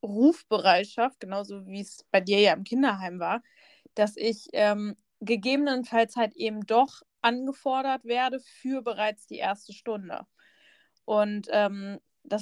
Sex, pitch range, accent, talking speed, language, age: female, 210-245 Hz, German, 130 wpm, German, 20-39